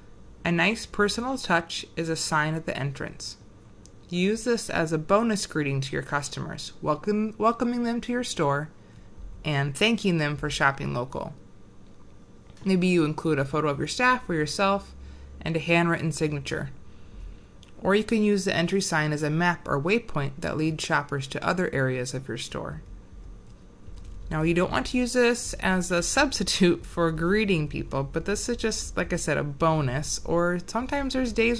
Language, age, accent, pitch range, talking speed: English, 30-49, American, 140-190 Hz, 175 wpm